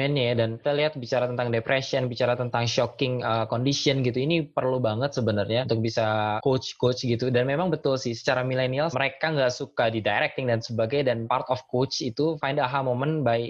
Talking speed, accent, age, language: 185 wpm, native, 20-39, Indonesian